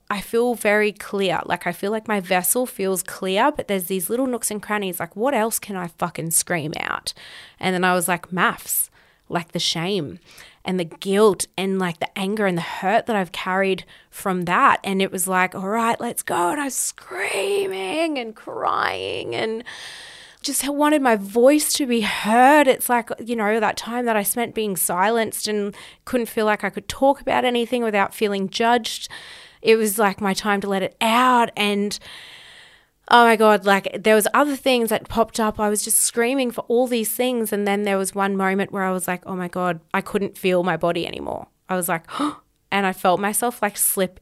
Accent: Australian